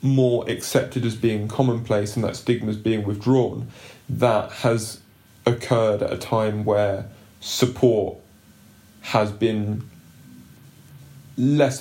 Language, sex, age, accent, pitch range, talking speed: English, male, 20-39, British, 110-125 Hz, 110 wpm